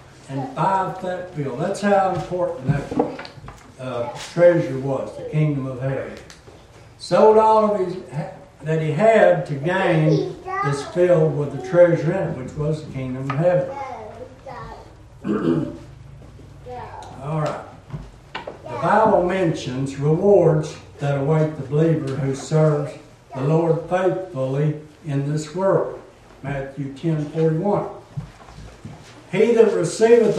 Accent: American